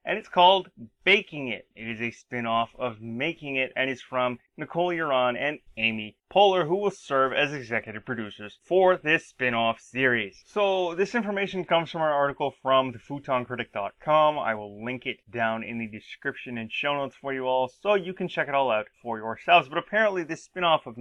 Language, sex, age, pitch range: English, male, 20-39, 120-150 Hz